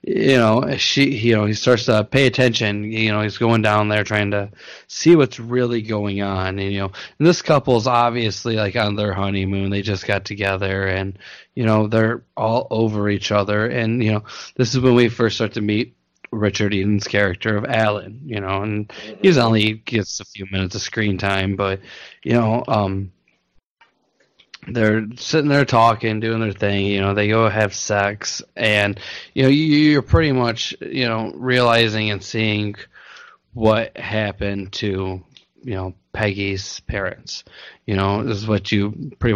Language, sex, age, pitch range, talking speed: English, male, 20-39, 100-120 Hz, 175 wpm